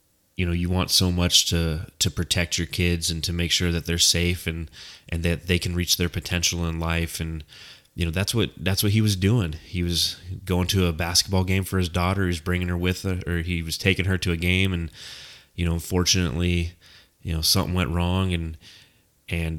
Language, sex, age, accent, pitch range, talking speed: English, male, 30-49, American, 85-95 Hz, 225 wpm